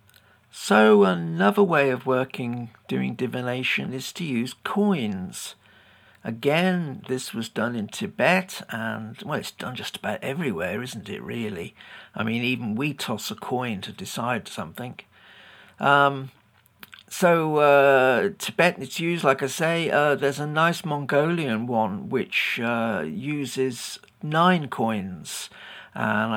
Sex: male